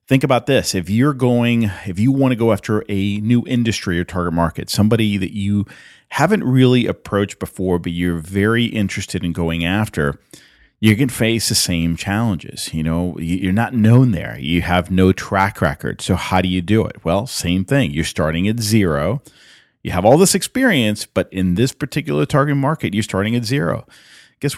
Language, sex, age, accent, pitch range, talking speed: English, male, 40-59, American, 90-120 Hz, 190 wpm